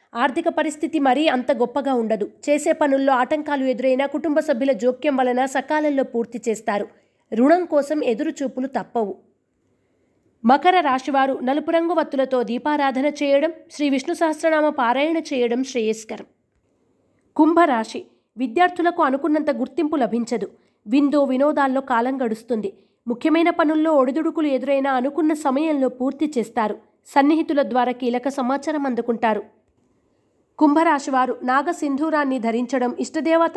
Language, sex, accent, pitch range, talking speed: Telugu, female, native, 245-305 Hz, 105 wpm